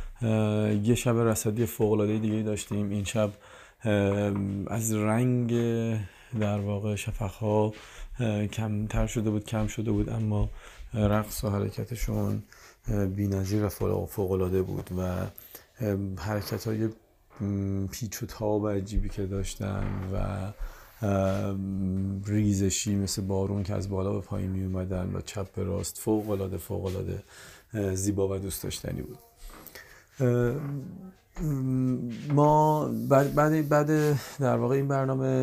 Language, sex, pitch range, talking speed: Persian, male, 100-115 Hz, 110 wpm